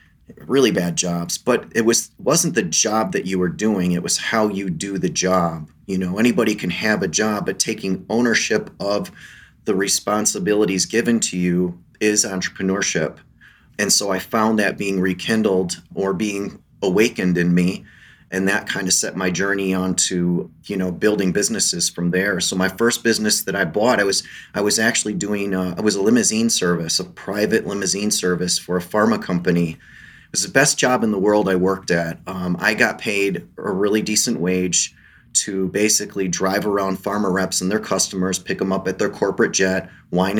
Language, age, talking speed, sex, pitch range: English, 30-49, 185 wpm, male, 90-105 Hz